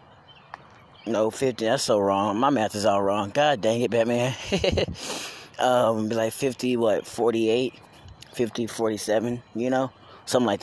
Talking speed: 145 wpm